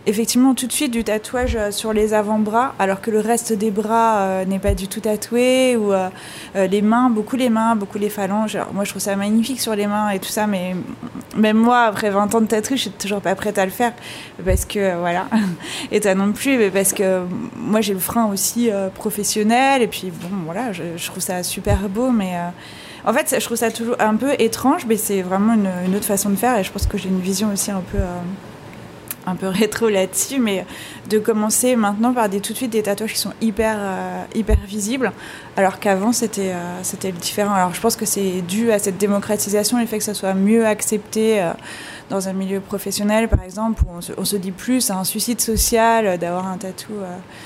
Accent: French